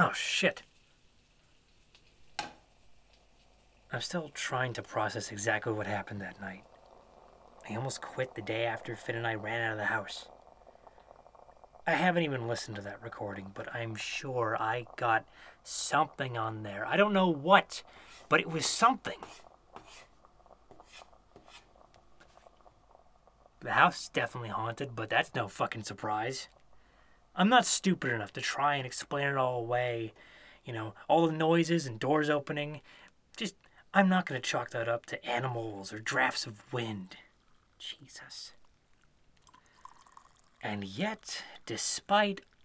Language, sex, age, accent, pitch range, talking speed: English, male, 30-49, American, 110-180 Hz, 135 wpm